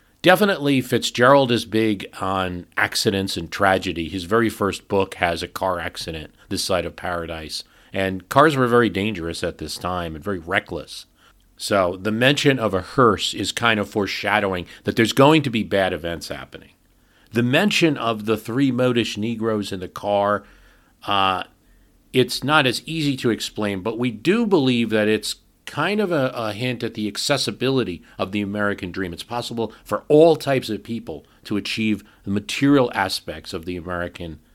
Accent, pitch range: American, 90-115 Hz